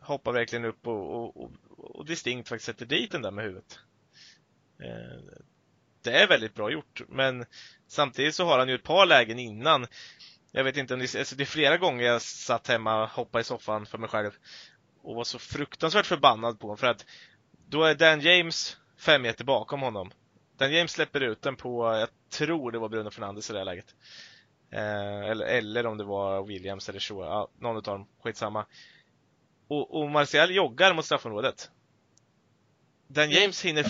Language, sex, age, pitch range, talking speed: Swedish, male, 20-39, 110-150 Hz, 185 wpm